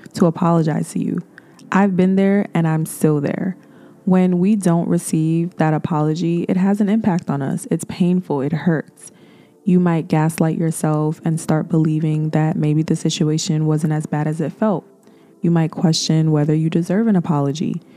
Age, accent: 20-39, American